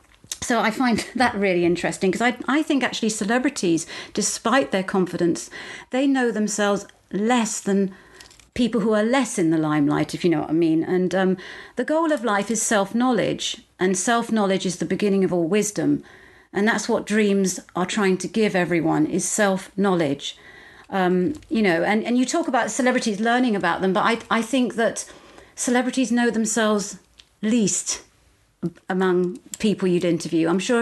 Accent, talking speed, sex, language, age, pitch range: British, 170 wpm, female, English, 40-59, 180-235 Hz